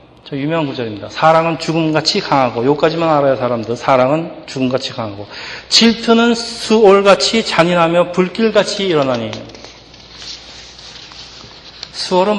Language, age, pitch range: Korean, 40-59, 130-175 Hz